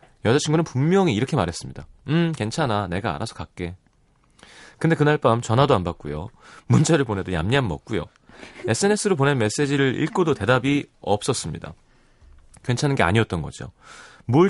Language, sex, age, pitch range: Korean, male, 30-49, 100-155 Hz